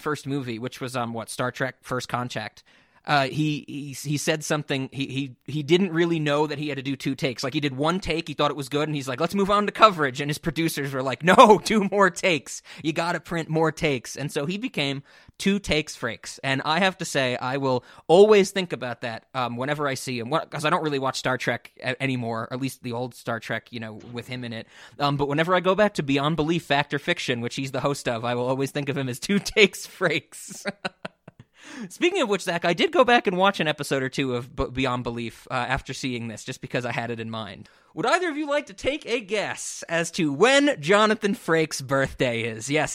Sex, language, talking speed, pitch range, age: male, English, 250 wpm, 125-170 Hz, 20-39